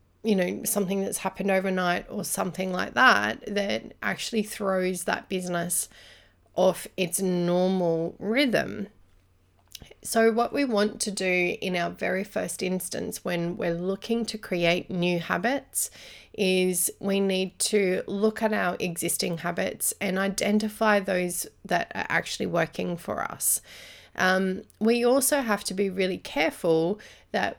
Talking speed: 140 wpm